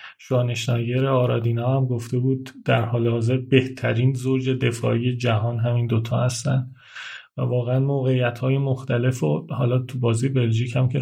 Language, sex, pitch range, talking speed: Persian, male, 125-140 Hz, 145 wpm